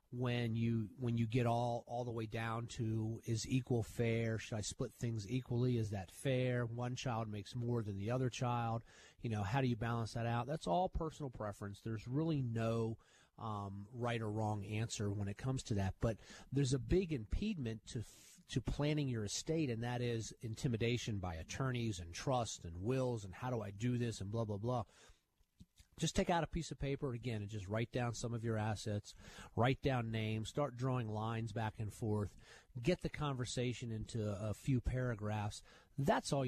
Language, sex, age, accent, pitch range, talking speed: English, male, 30-49, American, 110-130 Hz, 195 wpm